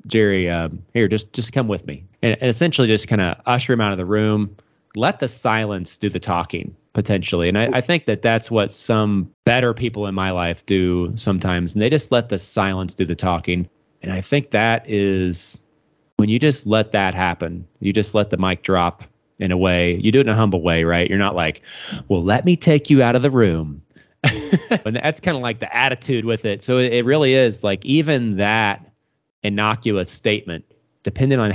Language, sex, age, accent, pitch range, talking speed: English, male, 30-49, American, 90-120 Hz, 210 wpm